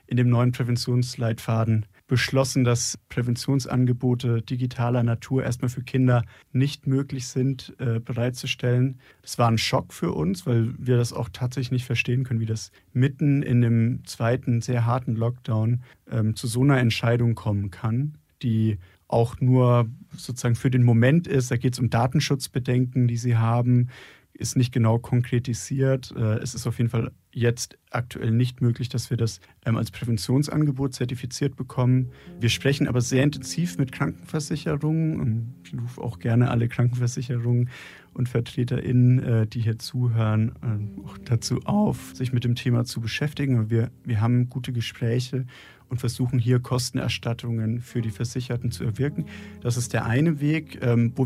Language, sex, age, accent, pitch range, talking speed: German, male, 40-59, German, 115-130 Hz, 155 wpm